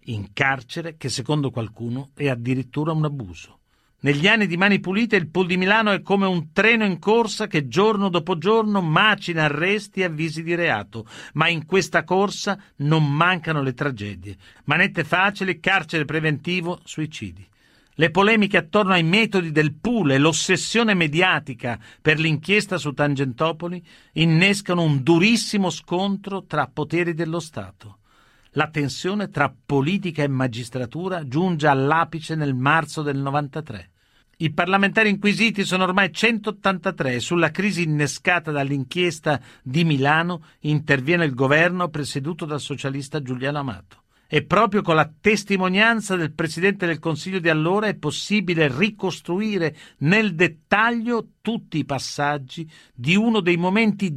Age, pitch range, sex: 50-69, 140-190 Hz, male